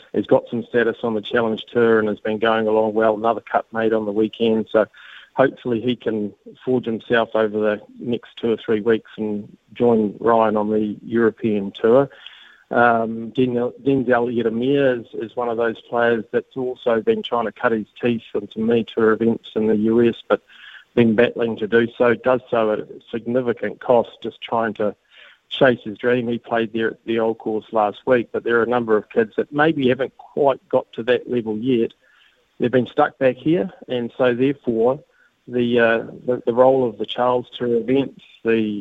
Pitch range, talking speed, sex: 110-120 Hz, 195 wpm, male